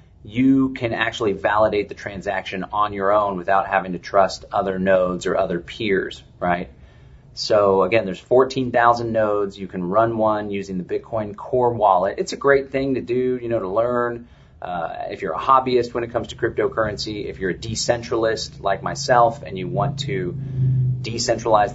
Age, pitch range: 30-49, 100-125 Hz